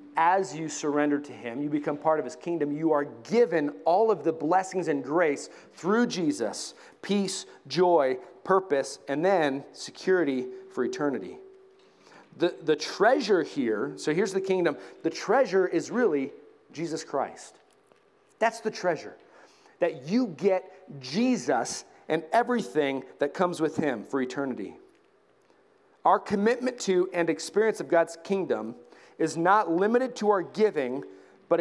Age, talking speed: 40-59, 140 wpm